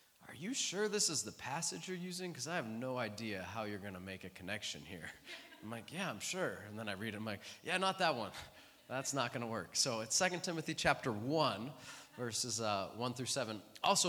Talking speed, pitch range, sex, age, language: 235 wpm, 100-135 Hz, male, 20-39, English